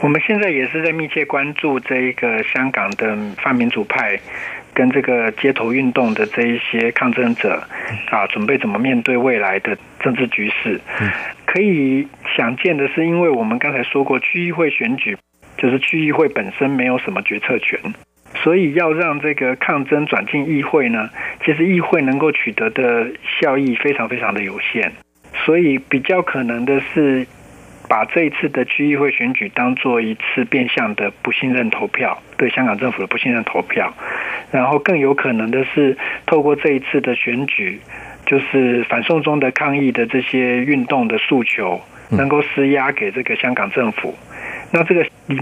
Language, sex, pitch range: Chinese, male, 125-155 Hz